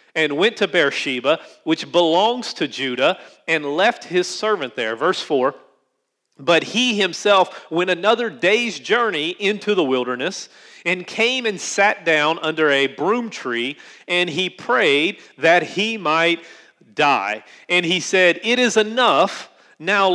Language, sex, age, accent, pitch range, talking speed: English, male, 40-59, American, 170-210 Hz, 145 wpm